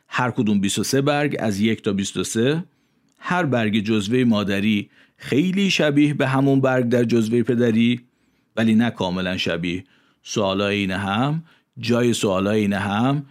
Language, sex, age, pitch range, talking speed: Persian, male, 50-69, 100-130 Hz, 140 wpm